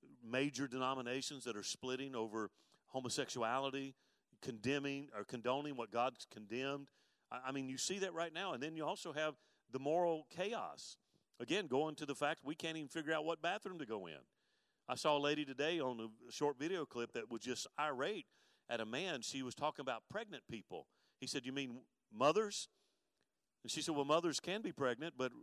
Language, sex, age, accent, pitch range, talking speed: English, male, 40-59, American, 130-170 Hz, 190 wpm